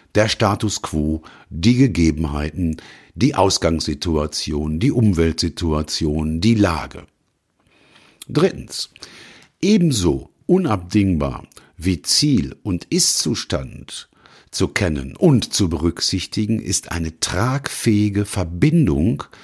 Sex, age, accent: male, 50-69, German